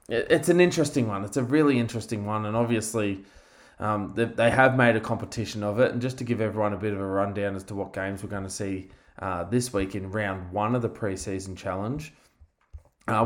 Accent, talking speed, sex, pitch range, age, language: Australian, 215 wpm, male, 100-115 Hz, 20-39, English